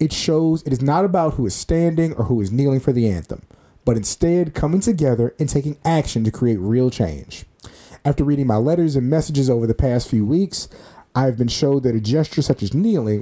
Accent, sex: American, male